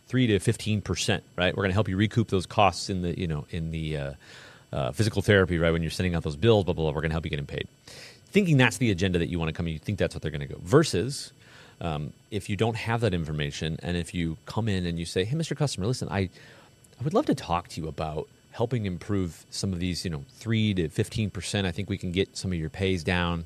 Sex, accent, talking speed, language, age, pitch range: male, American, 280 wpm, English, 30-49, 85-110 Hz